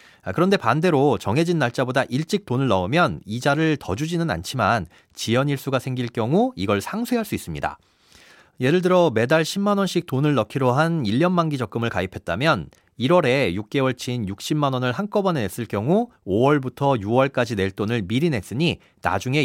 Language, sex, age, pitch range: Korean, male, 40-59, 115-170 Hz